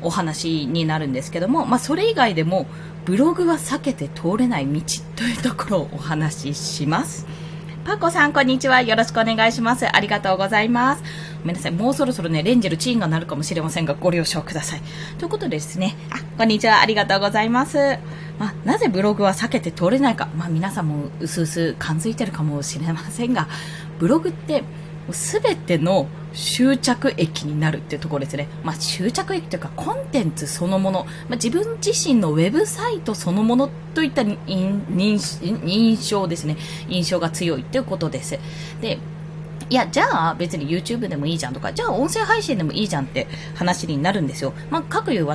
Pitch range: 160-230 Hz